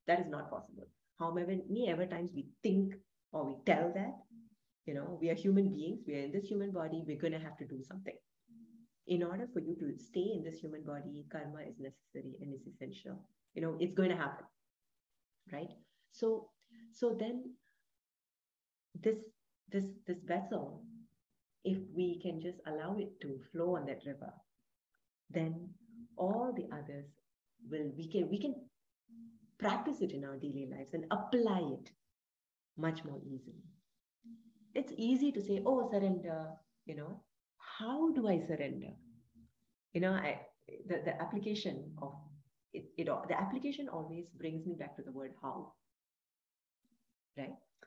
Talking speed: 155 wpm